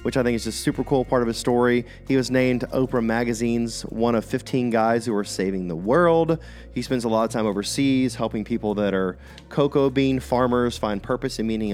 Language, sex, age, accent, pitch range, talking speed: English, male, 30-49, American, 100-125 Hz, 220 wpm